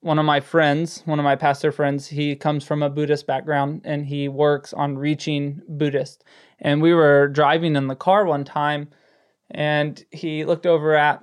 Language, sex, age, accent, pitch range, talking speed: English, male, 20-39, American, 145-180 Hz, 185 wpm